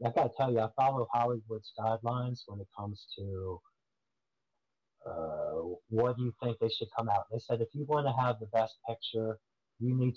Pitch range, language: 115-135 Hz, English